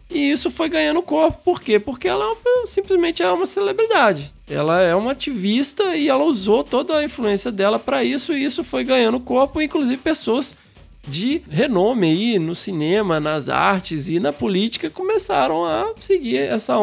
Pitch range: 200-300 Hz